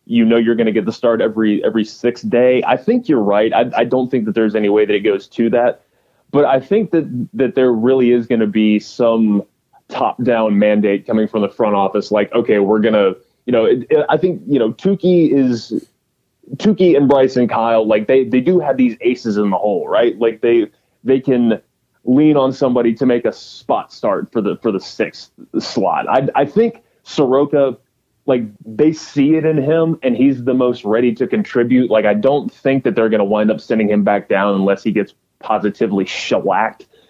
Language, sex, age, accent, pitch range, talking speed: English, male, 20-39, American, 110-140 Hz, 215 wpm